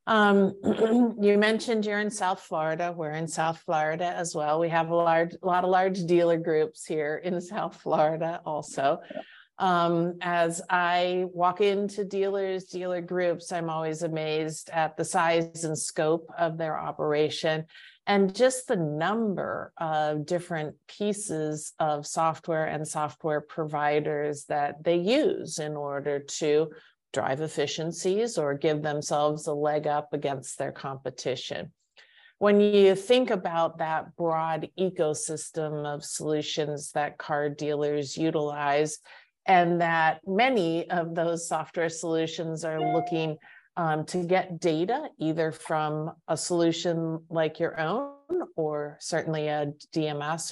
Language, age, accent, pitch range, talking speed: English, 50-69, American, 150-180 Hz, 135 wpm